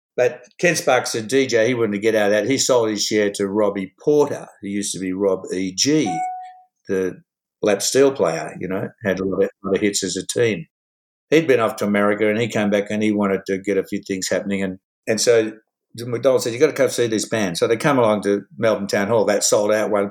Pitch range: 100-125 Hz